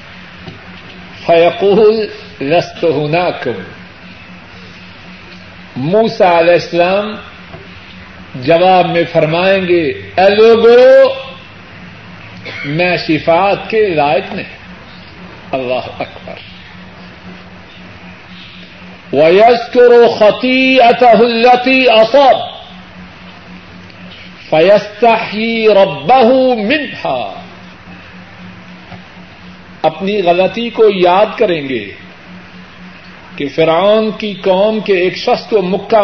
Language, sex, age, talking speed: Urdu, male, 50-69, 65 wpm